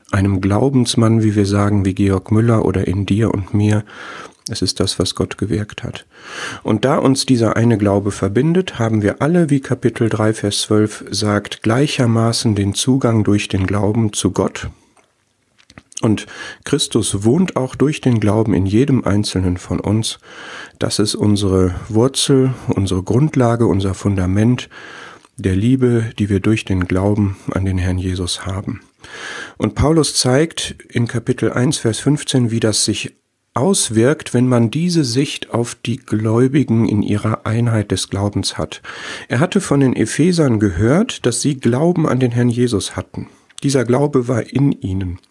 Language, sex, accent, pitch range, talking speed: German, male, German, 100-130 Hz, 160 wpm